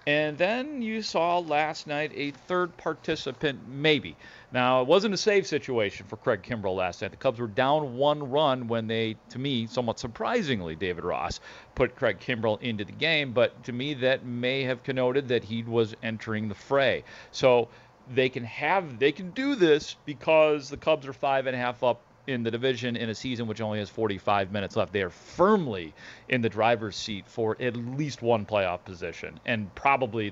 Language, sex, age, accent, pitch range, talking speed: English, male, 40-59, American, 115-145 Hz, 195 wpm